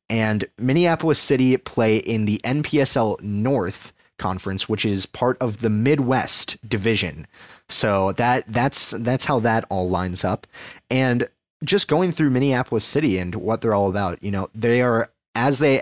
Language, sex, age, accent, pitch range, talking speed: English, male, 30-49, American, 95-130 Hz, 160 wpm